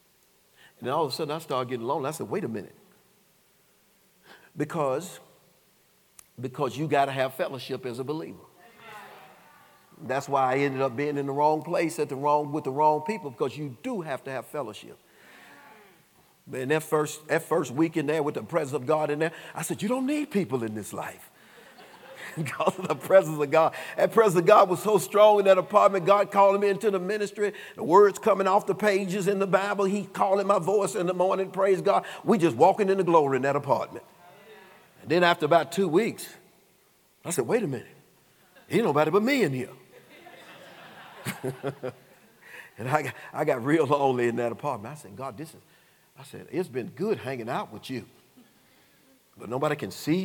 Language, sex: English, male